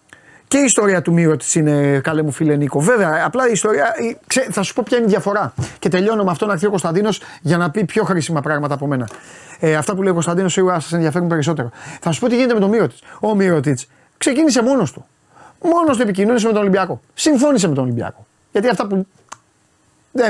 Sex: male